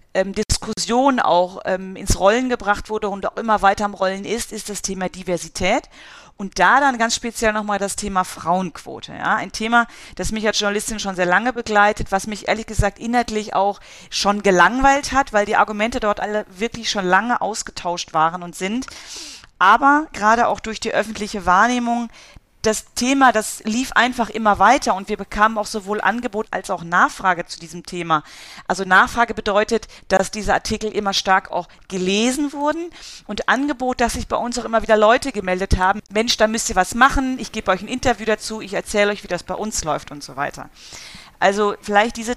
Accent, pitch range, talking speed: German, 195-235 Hz, 185 wpm